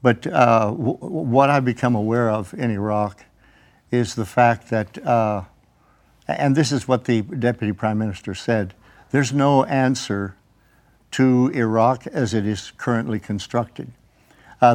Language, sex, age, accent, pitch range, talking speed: English, male, 60-79, American, 110-130 Hz, 140 wpm